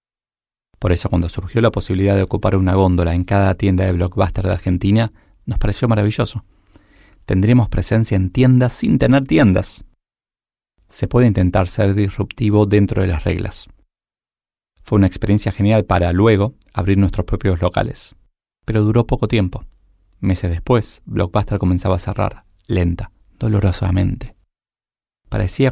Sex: male